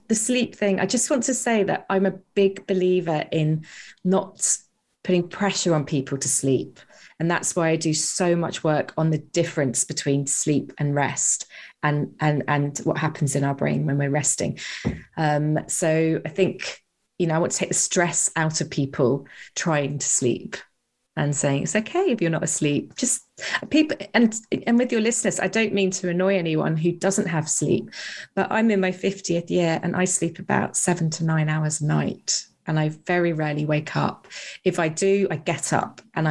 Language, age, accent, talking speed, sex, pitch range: English, 20-39, British, 195 wpm, female, 150-185 Hz